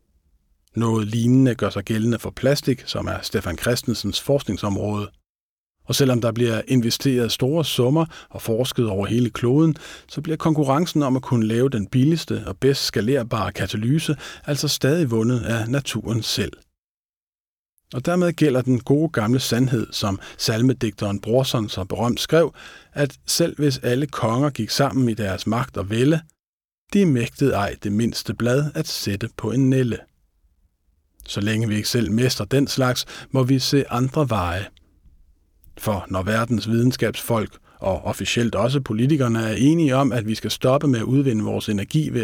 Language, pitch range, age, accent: Danish, 100-135 Hz, 50-69, native